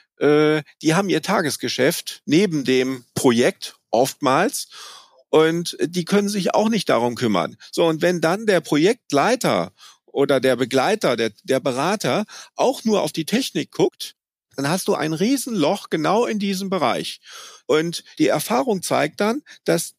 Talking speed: 145 wpm